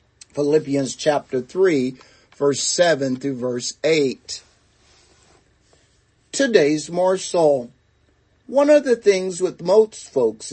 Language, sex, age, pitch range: English, male, 50-69, 135-180 Hz